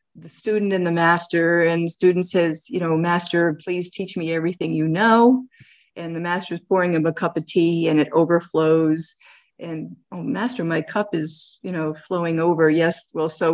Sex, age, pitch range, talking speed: female, 40-59, 165-195 Hz, 190 wpm